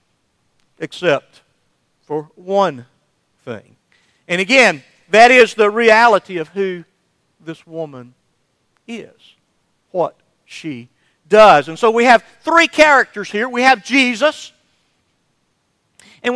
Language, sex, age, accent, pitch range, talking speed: English, male, 50-69, American, 165-245 Hz, 105 wpm